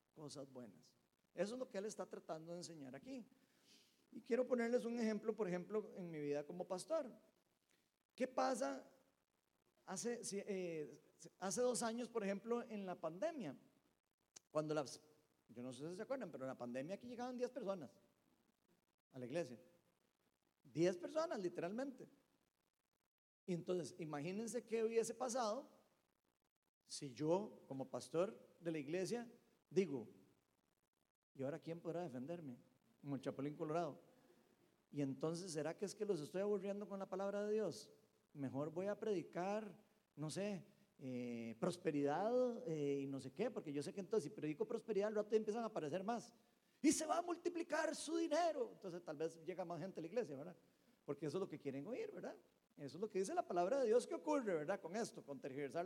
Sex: male